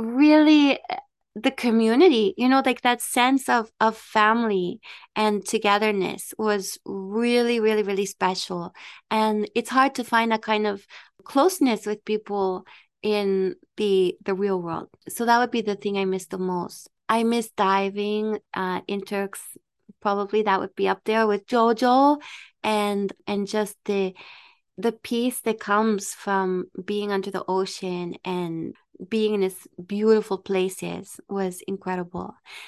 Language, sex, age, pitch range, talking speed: English, female, 20-39, 200-260 Hz, 145 wpm